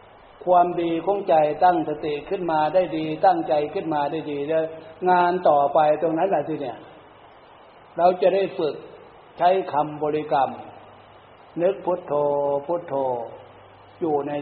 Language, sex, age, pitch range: Thai, male, 60-79, 145-175 Hz